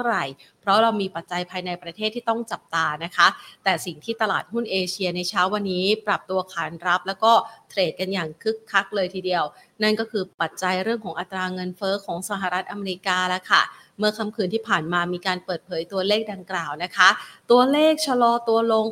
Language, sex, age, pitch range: Thai, female, 30-49, 185-230 Hz